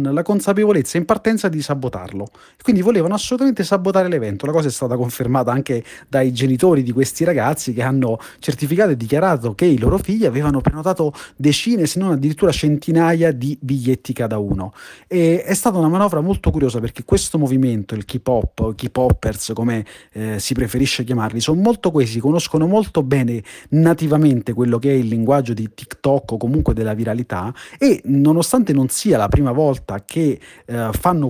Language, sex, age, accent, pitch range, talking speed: Italian, male, 30-49, native, 120-160 Hz, 170 wpm